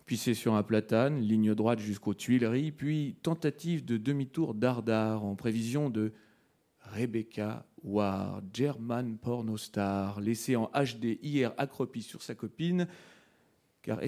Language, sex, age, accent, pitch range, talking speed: French, male, 40-59, French, 105-130 Hz, 125 wpm